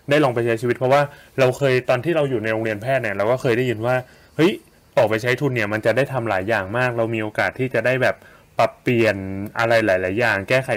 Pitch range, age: 100-125 Hz, 20-39